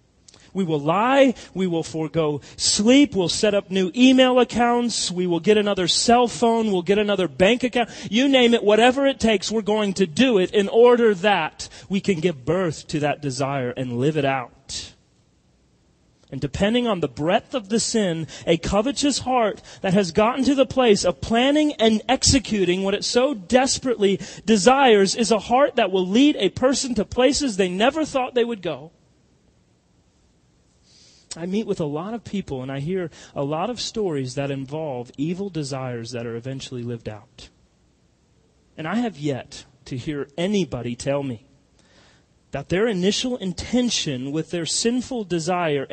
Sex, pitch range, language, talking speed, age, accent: male, 145-230 Hz, English, 170 wpm, 30-49, American